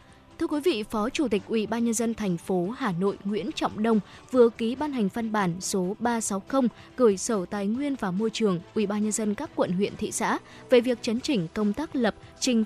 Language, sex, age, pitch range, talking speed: Vietnamese, female, 20-39, 200-245 Hz, 230 wpm